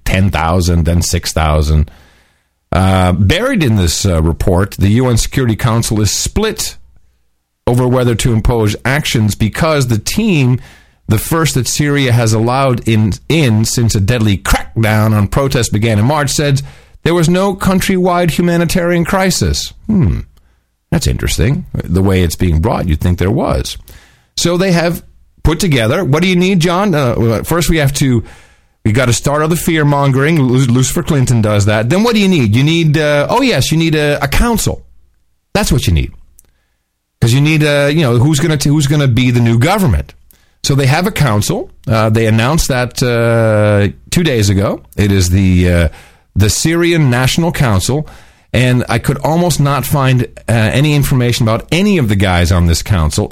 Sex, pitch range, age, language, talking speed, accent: male, 95-150 Hz, 40-59, English, 180 wpm, American